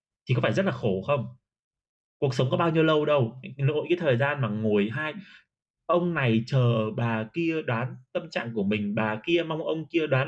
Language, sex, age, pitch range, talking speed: Vietnamese, male, 20-39, 115-160 Hz, 215 wpm